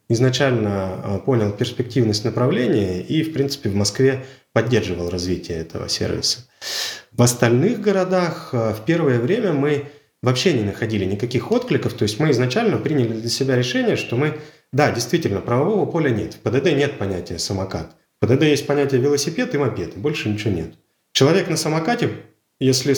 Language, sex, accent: Russian, male, native